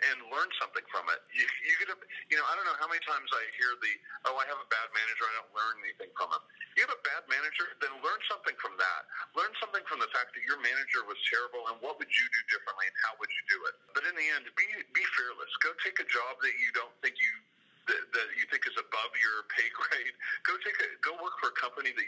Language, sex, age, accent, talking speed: English, male, 40-59, American, 265 wpm